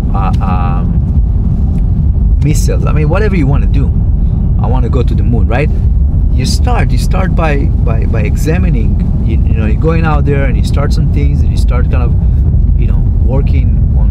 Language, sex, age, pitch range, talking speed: English, male, 30-49, 80-110 Hz, 200 wpm